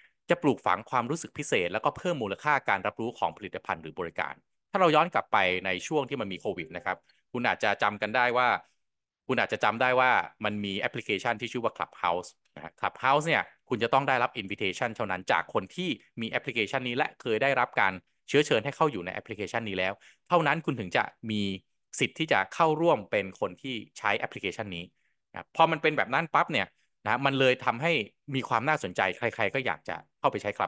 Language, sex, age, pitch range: Thai, male, 20-39, 100-135 Hz